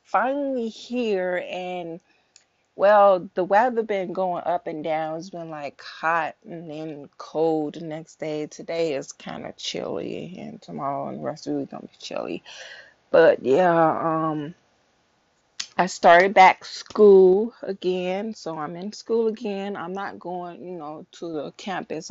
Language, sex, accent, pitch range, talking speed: English, female, American, 155-200 Hz, 155 wpm